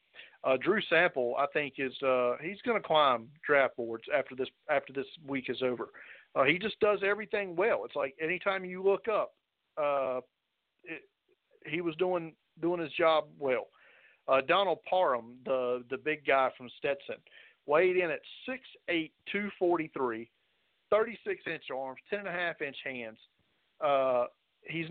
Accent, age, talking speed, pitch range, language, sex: American, 50-69, 170 wpm, 130-175 Hz, English, male